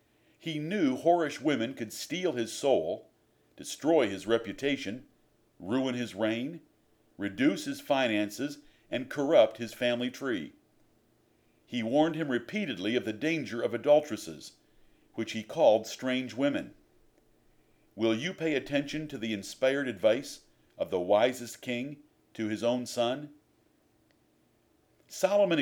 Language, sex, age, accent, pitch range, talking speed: English, male, 50-69, American, 115-150 Hz, 125 wpm